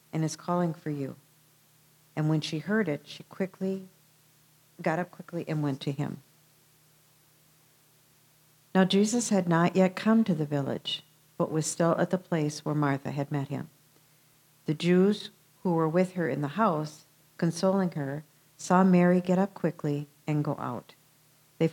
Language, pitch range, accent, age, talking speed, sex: English, 150-175 Hz, American, 50-69, 165 wpm, female